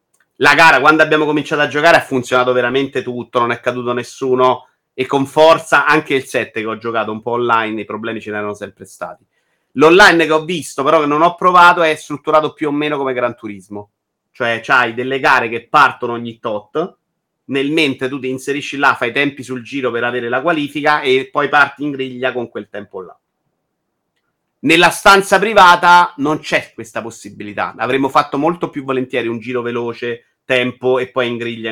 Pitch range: 115-140 Hz